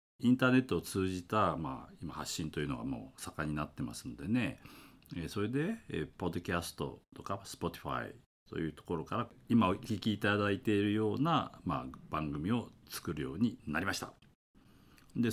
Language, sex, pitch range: Japanese, male, 85-130 Hz